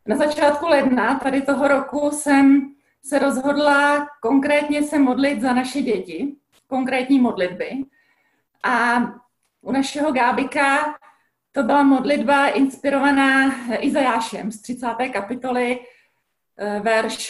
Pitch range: 210-275 Hz